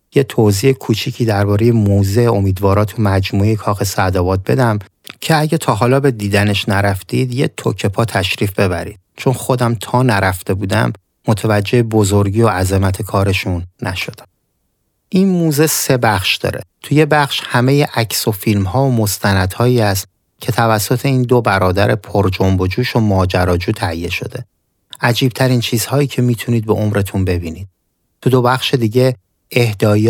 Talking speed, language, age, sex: 140 wpm, Persian, 30-49, male